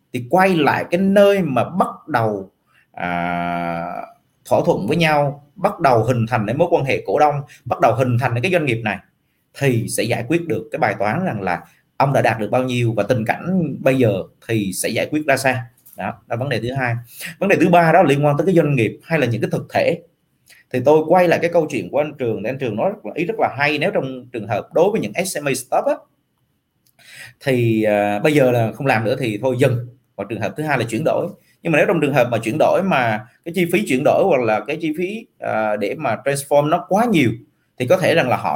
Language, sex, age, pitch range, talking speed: Vietnamese, male, 30-49, 115-170 Hz, 245 wpm